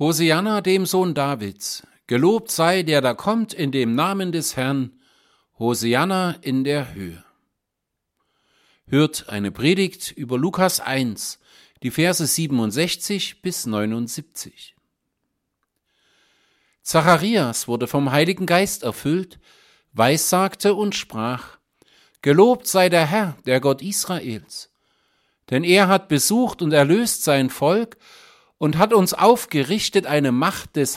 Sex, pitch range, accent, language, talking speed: male, 135-190 Hz, German, German, 115 wpm